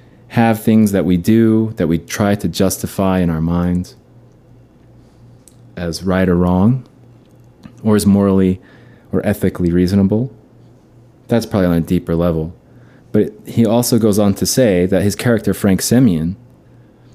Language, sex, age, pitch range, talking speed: English, male, 30-49, 95-120 Hz, 145 wpm